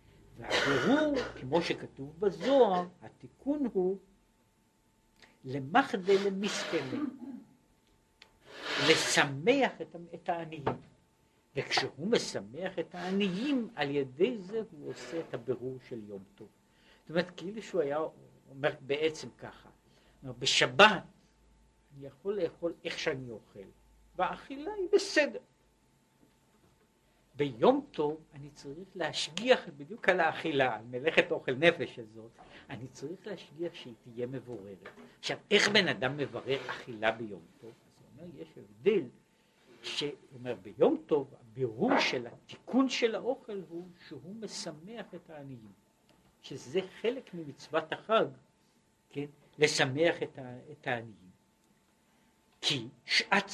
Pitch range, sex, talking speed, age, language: 130-195 Hz, male, 110 wpm, 60-79, Hebrew